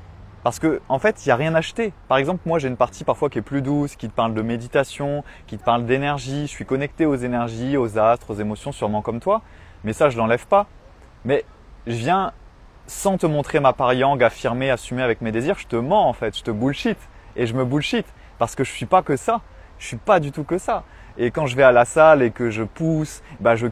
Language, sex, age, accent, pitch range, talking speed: French, male, 20-39, French, 115-160 Hz, 260 wpm